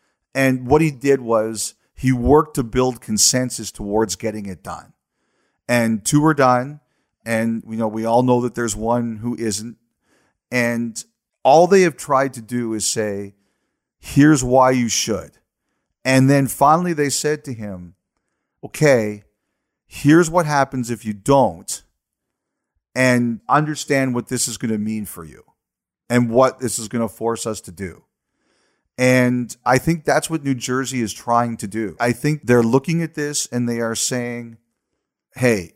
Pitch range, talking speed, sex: 110-135 Hz, 160 wpm, male